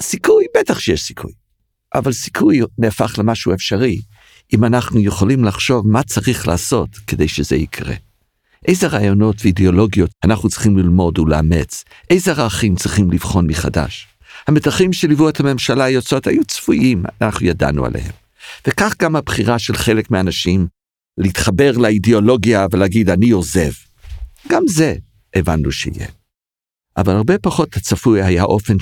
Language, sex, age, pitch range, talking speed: Hebrew, male, 50-69, 90-120 Hz, 130 wpm